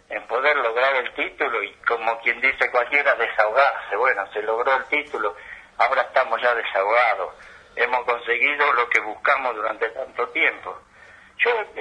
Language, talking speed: Spanish, 145 wpm